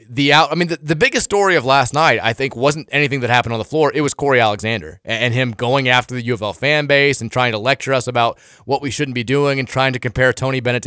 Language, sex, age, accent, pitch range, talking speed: English, male, 20-39, American, 115-150 Hz, 275 wpm